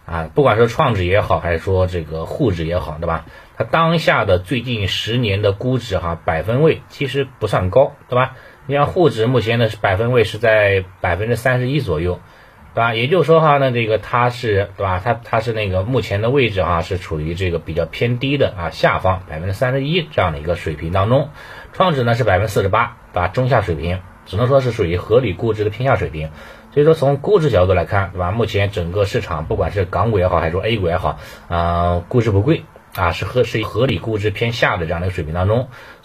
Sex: male